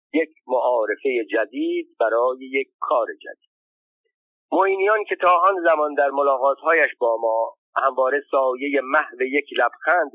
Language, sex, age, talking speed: Persian, male, 50-69, 125 wpm